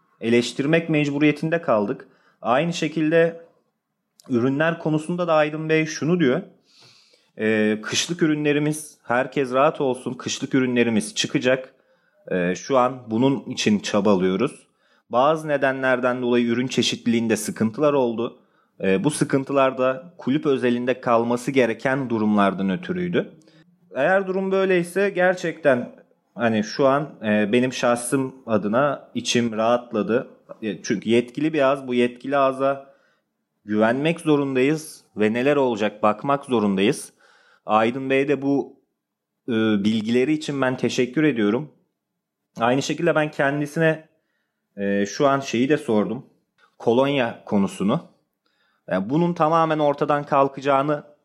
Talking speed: 110 wpm